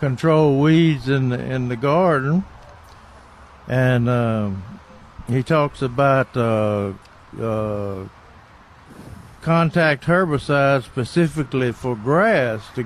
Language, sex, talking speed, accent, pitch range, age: English, male, 95 wpm, American, 115-150 Hz, 60-79